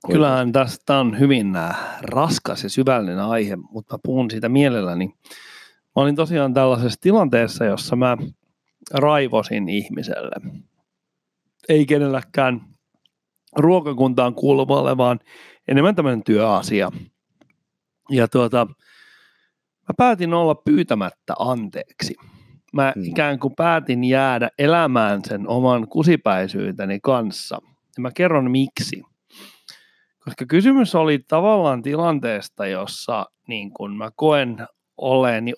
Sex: male